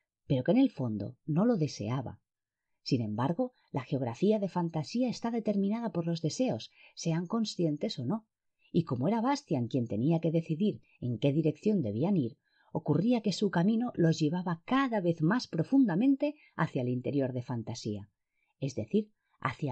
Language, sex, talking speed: Spanish, female, 165 wpm